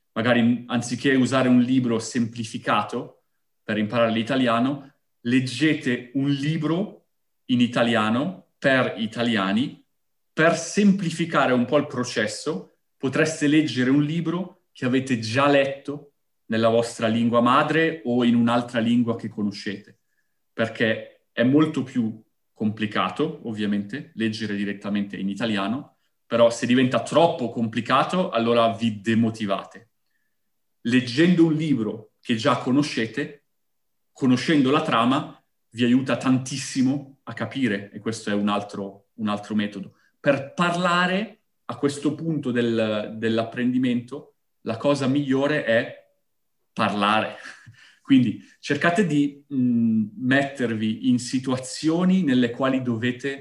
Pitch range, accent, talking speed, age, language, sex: 115-145 Hz, native, 110 wpm, 30-49, Italian, male